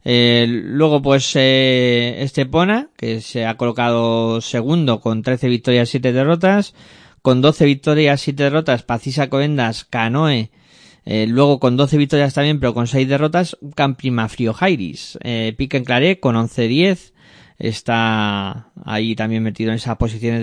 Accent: Spanish